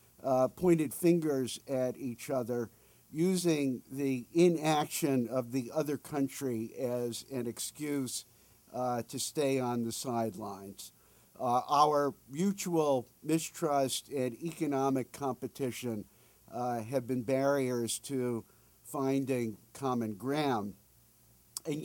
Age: 50-69